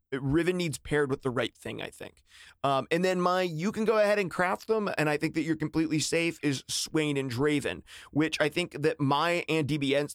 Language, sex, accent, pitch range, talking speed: English, male, American, 140-165 Hz, 225 wpm